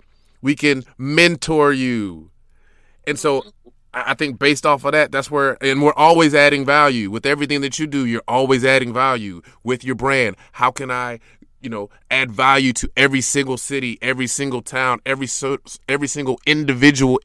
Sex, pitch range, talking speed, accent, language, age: male, 120-145 Hz, 170 wpm, American, English, 20-39